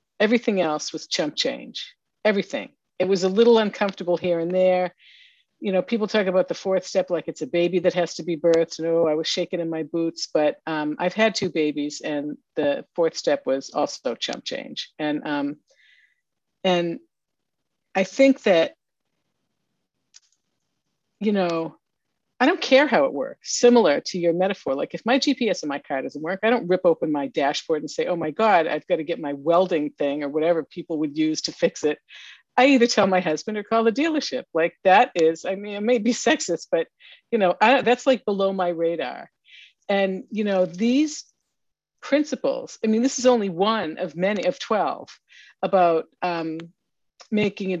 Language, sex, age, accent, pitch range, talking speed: English, female, 50-69, American, 175-250 Hz, 190 wpm